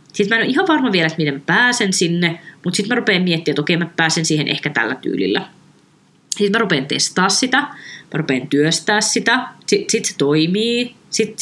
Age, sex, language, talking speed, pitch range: 20-39, female, Finnish, 205 wpm, 155-210 Hz